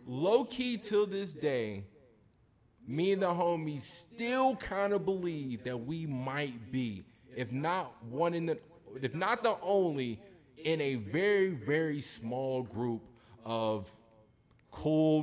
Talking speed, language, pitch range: 135 wpm, English, 115-155 Hz